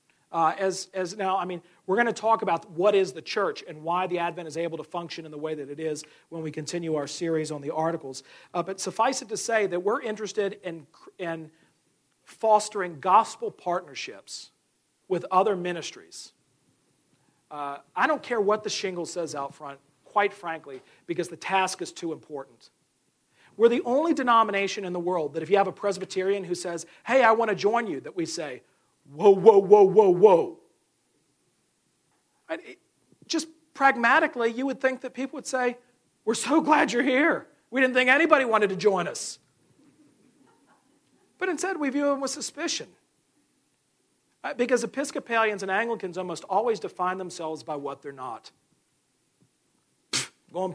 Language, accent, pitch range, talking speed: English, American, 165-250 Hz, 170 wpm